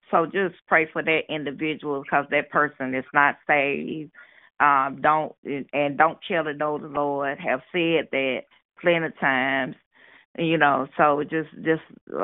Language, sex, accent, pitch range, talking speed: English, female, American, 135-150 Hz, 155 wpm